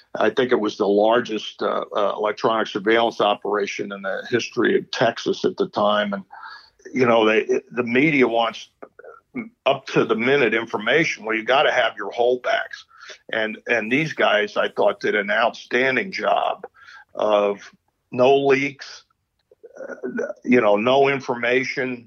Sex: male